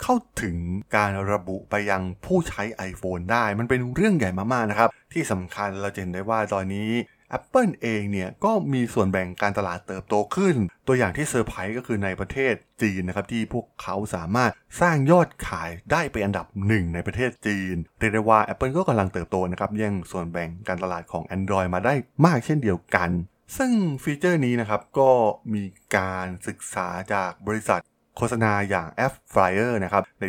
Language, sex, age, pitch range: Thai, male, 20-39, 95-120 Hz